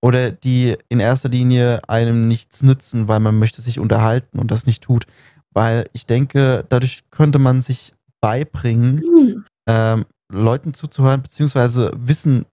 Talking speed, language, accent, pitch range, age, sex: 145 wpm, German, German, 115-140 Hz, 20-39, male